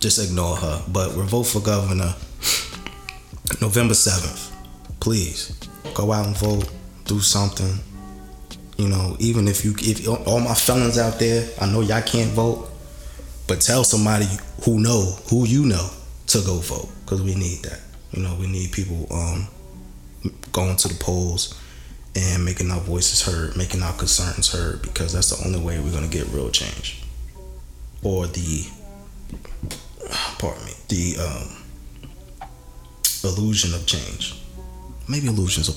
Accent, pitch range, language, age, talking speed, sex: American, 90-105 Hz, English, 20-39, 150 wpm, male